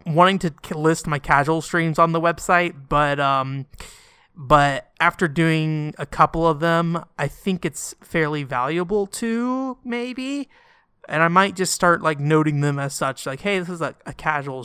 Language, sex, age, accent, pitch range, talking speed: English, male, 20-39, American, 140-195 Hz, 170 wpm